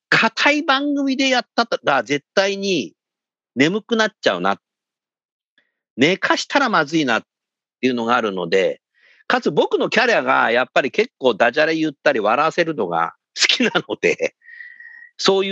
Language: Japanese